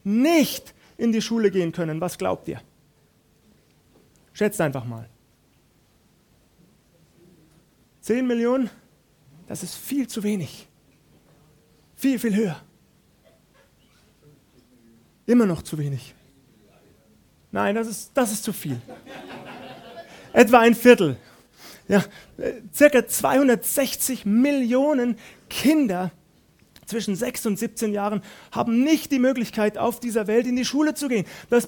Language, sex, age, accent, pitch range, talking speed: German, male, 30-49, German, 210-255 Hz, 110 wpm